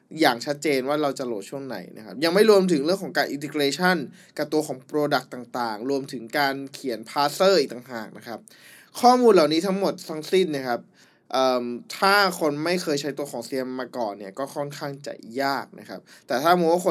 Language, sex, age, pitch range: Thai, male, 20-39, 130-170 Hz